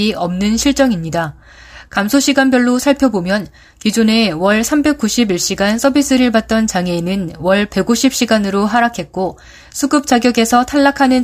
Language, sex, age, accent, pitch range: Korean, female, 20-39, native, 185-235 Hz